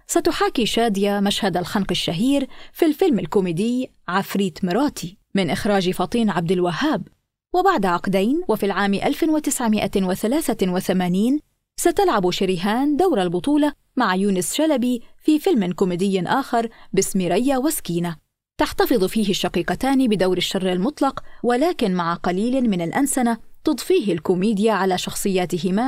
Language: Arabic